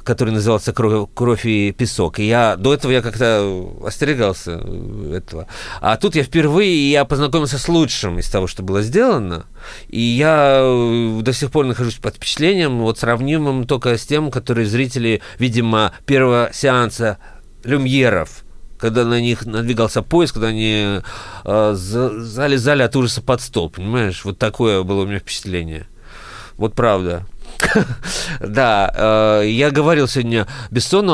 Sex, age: male, 40-59